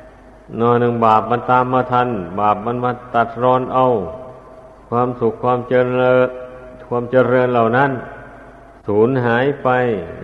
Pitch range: 120-130 Hz